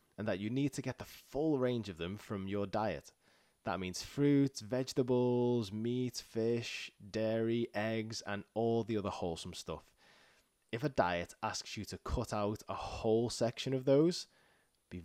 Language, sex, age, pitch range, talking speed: English, male, 20-39, 95-120 Hz, 170 wpm